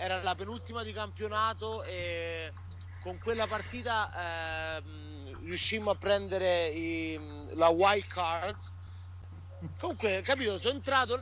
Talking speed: 110 wpm